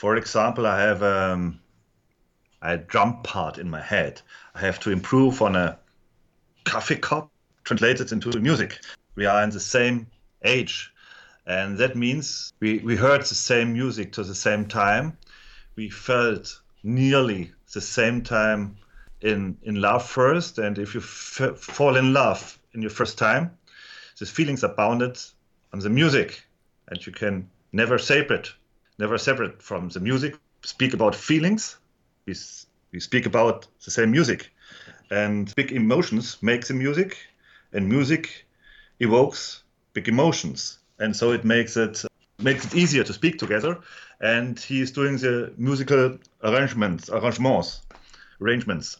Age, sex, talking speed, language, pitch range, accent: 40-59, male, 145 wpm, English, 105-130 Hz, German